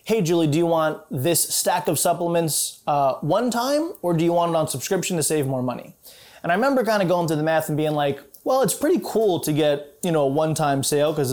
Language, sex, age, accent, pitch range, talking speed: English, male, 20-39, American, 145-175 Hz, 250 wpm